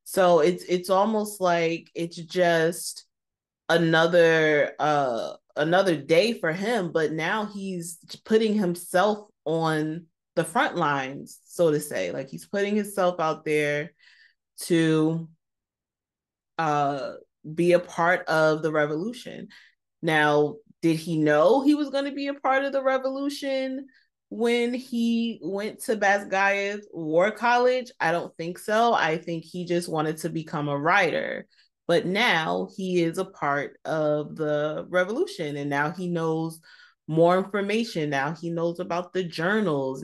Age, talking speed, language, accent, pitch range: 20-39, 140 wpm, English, American, 155-205 Hz